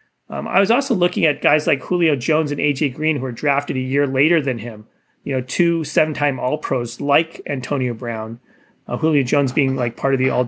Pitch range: 130-175 Hz